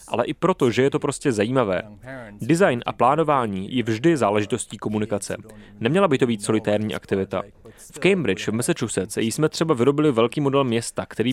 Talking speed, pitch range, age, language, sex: 175 wpm, 105-140 Hz, 30-49, Czech, male